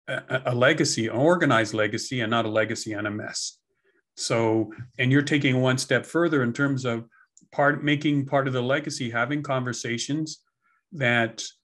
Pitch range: 120-140 Hz